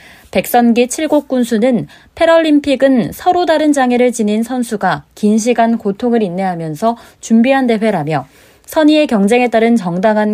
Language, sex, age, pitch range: Korean, female, 20-39, 190-260 Hz